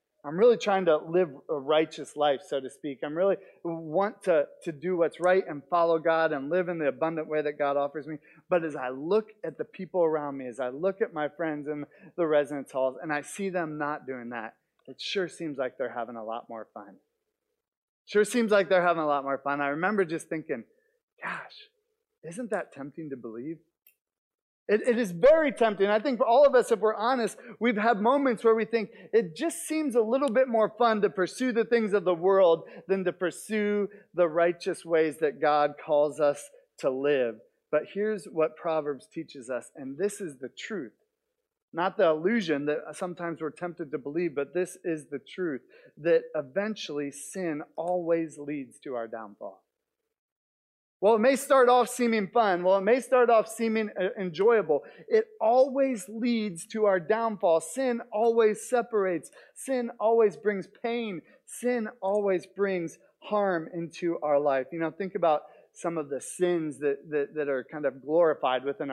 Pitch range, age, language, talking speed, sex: 150-225 Hz, 30-49, English, 190 wpm, male